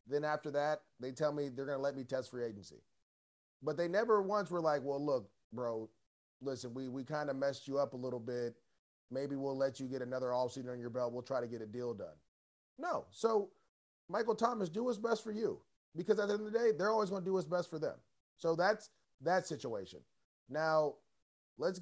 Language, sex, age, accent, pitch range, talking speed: English, male, 30-49, American, 135-205 Hz, 225 wpm